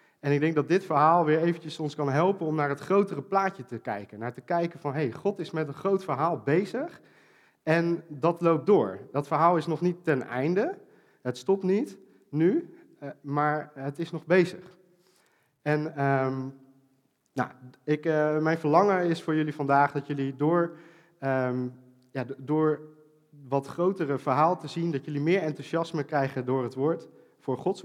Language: Dutch